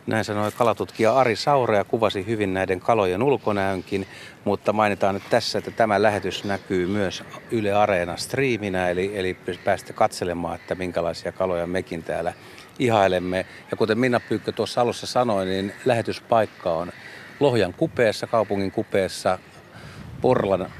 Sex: male